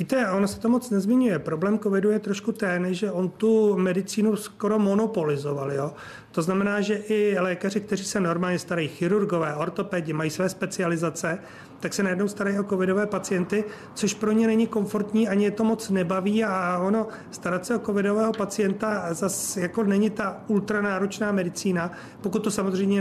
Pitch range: 175-205 Hz